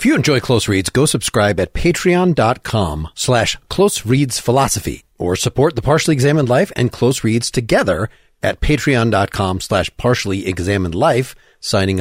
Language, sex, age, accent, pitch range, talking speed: English, male, 40-59, American, 100-135 Hz, 150 wpm